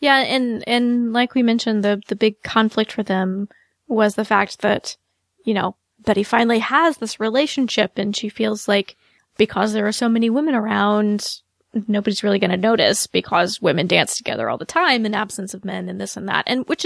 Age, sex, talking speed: 20-39, female, 200 wpm